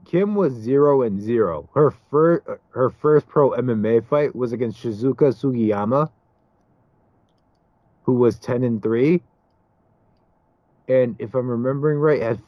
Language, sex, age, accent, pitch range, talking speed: English, male, 30-49, American, 105-155 Hz, 130 wpm